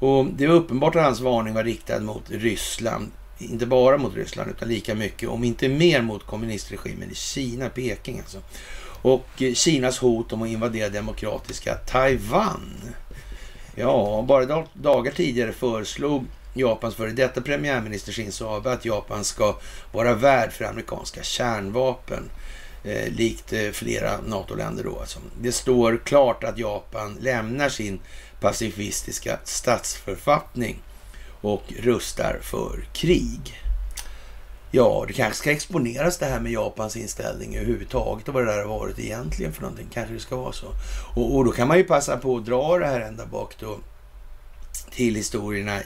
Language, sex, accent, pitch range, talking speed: Swedish, male, native, 105-130 Hz, 150 wpm